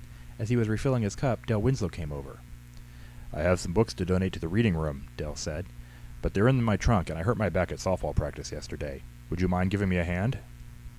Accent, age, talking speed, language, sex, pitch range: American, 30-49, 235 wpm, English, male, 65-105 Hz